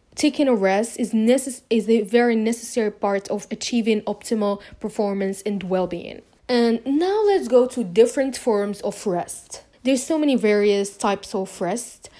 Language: English